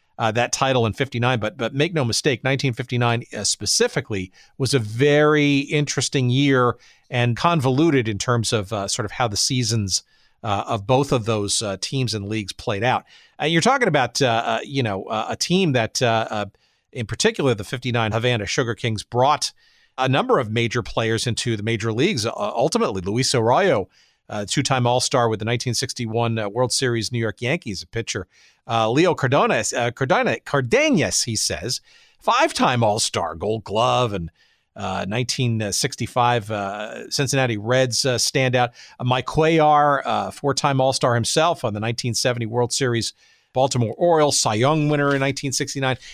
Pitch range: 115-140 Hz